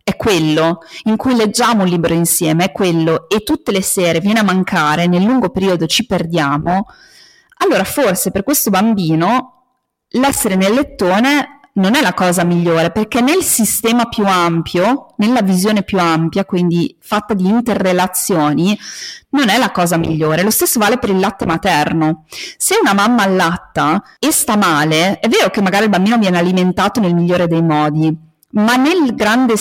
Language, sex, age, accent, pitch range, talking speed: Italian, female, 30-49, native, 175-235 Hz, 165 wpm